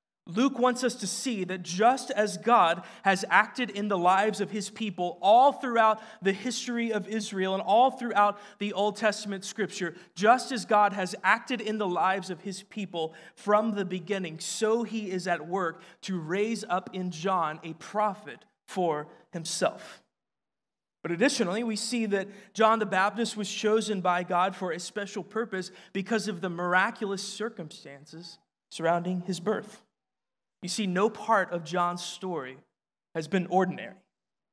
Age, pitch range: 20-39, 175-210 Hz